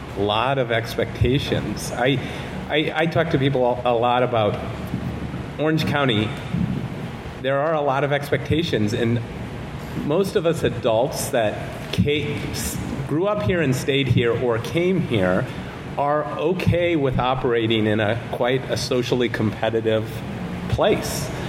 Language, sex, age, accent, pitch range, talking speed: English, male, 40-59, American, 115-145 Hz, 130 wpm